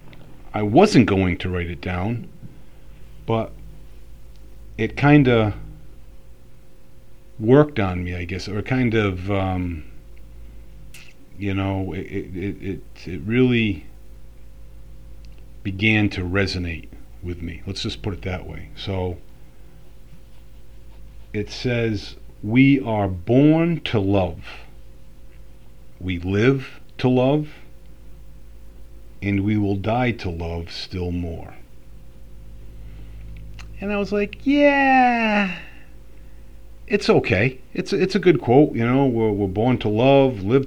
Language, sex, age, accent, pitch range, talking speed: English, male, 40-59, American, 85-125 Hz, 115 wpm